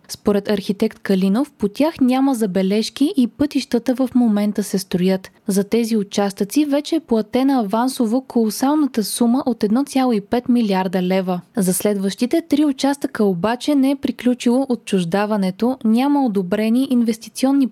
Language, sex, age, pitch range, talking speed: Bulgarian, female, 20-39, 200-265 Hz, 130 wpm